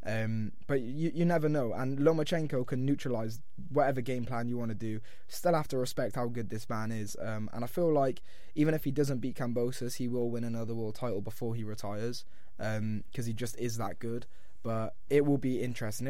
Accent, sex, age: British, male, 20-39